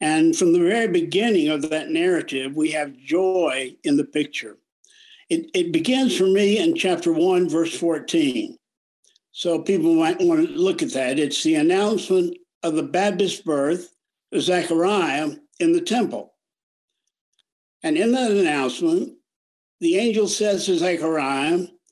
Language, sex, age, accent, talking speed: English, male, 60-79, American, 140 wpm